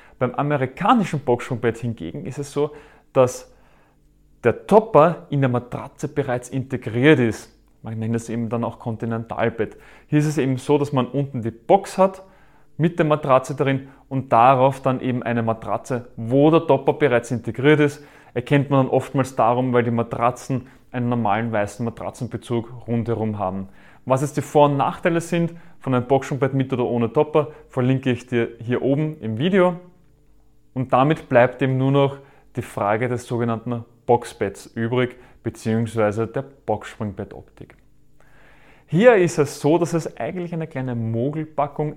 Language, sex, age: German, male, 30-49